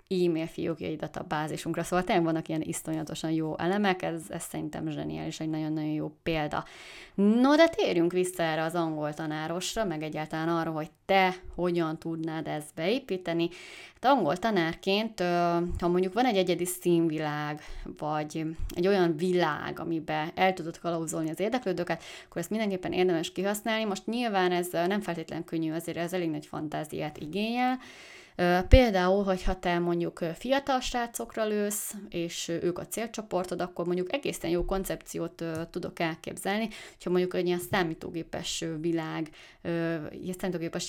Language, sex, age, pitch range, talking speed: Hungarian, female, 20-39, 160-185 Hz, 140 wpm